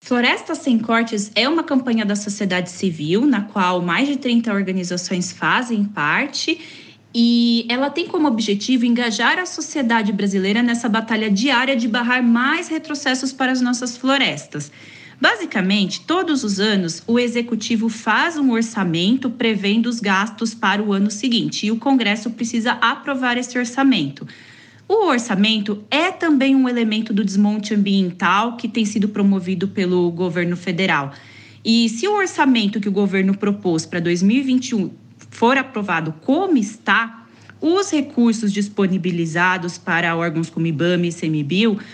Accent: Brazilian